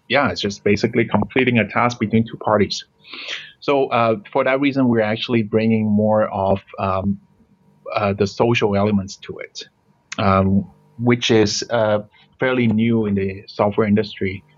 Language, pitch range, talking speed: English, 100-115 Hz, 150 wpm